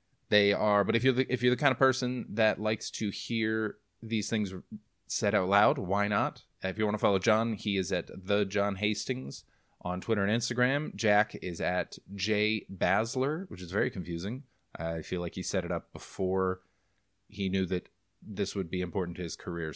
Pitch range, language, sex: 95-115 Hz, English, male